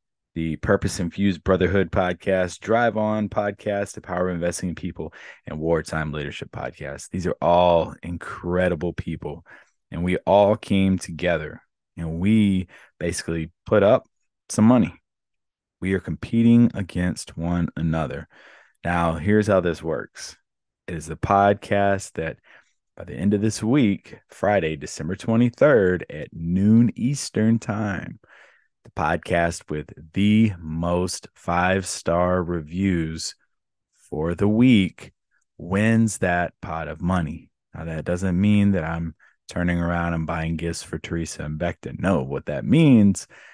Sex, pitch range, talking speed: male, 85-105 Hz, 135 wpm